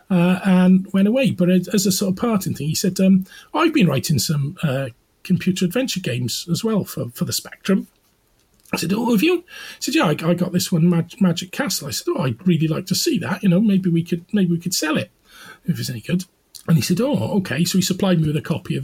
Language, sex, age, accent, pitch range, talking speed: English, male, 40-59, British, 145-190 Hz, 260 wpm